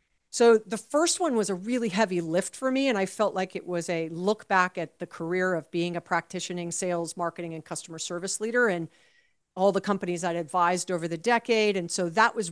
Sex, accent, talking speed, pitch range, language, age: female, American, 220 wpm, 170-210 Hz, English, 40-59